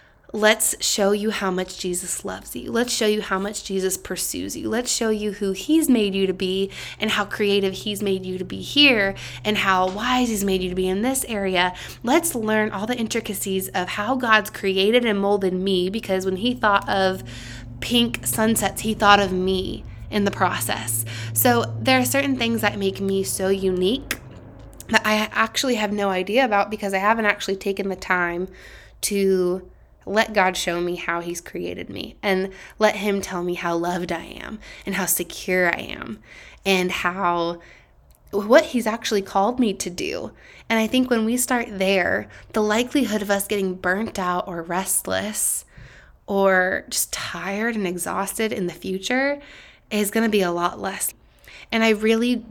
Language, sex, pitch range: English, female, 185-220 Hz